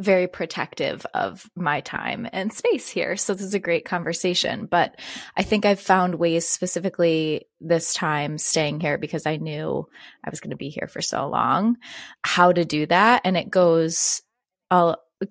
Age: 20-39